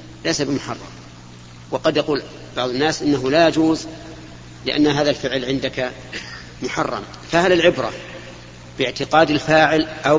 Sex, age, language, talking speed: male, 40-59, Arabic, 110 wpm